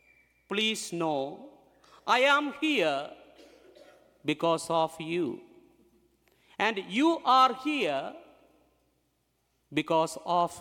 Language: English